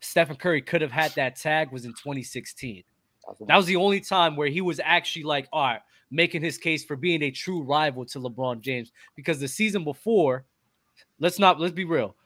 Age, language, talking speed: 20-39, English, 205 wpm